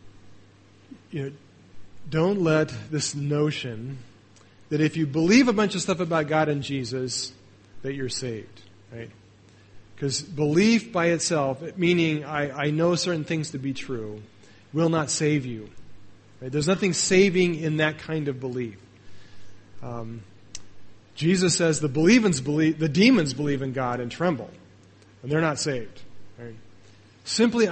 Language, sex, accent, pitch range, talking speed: English, male, American, 110-165 Hz, 145 wpm